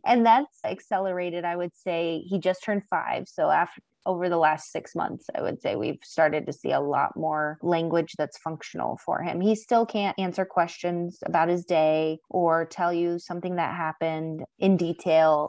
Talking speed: 185 wpm